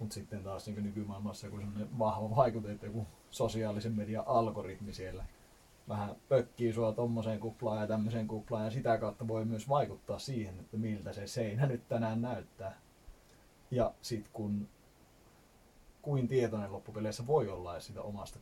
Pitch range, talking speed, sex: 100-115 Hz, 155 wpm, male